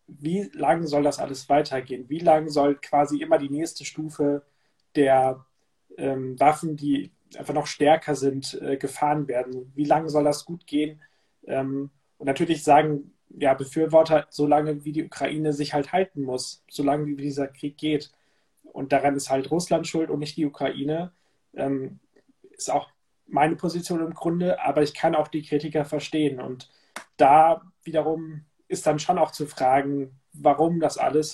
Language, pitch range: German, 140-155 Hz